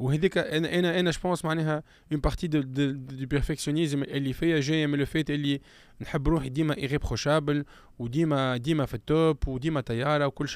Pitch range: 120-150 Hz